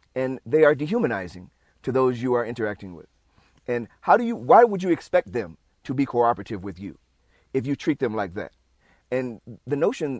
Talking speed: 195 wpm